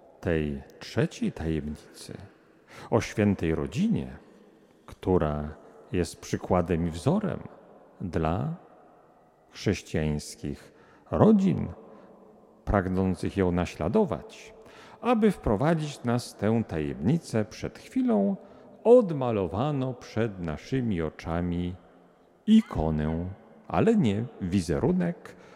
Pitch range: 85-140 Hz